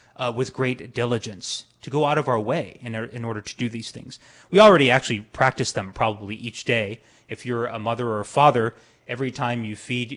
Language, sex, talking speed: English, male, 220 wpm